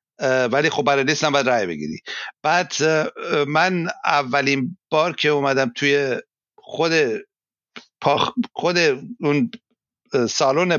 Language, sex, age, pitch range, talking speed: Persian, male, 60-79, 130-165 Hz, 100 wpm